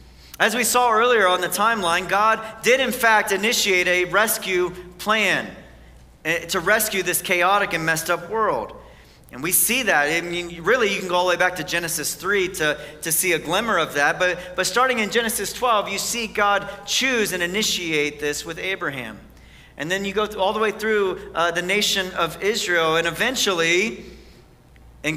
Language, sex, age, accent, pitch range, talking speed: English, male, 40-59, American, 160-200 Hz, 185 wpm